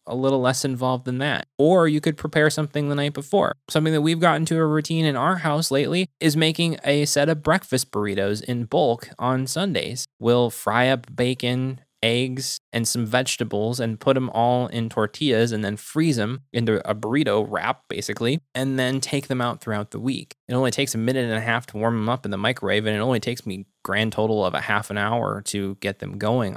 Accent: American